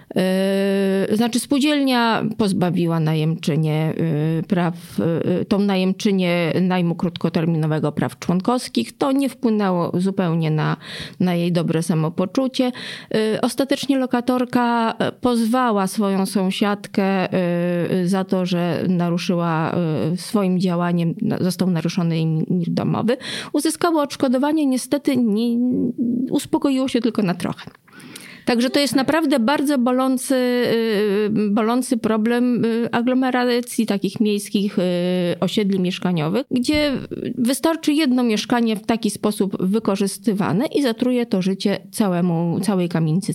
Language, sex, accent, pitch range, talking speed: Polish, female, native, 180-245 Hz, 100 wpm